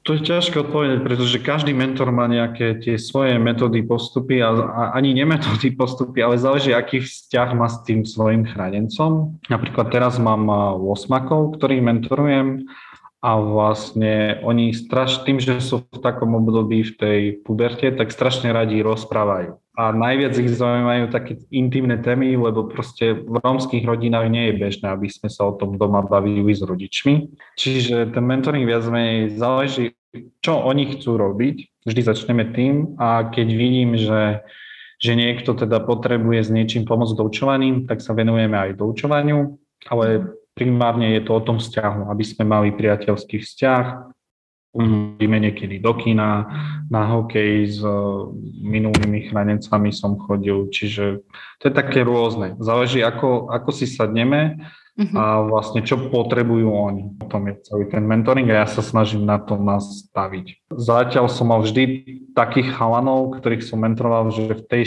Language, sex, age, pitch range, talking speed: Slovak, male, 20-39, 110-130 Hz, 155 wpm